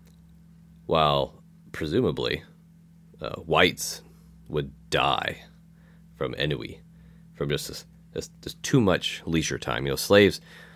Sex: male